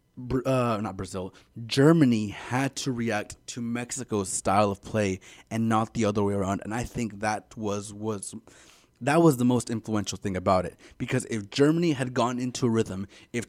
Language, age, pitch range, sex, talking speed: English, 20-39, 105-125 Hz, male, 180 wpm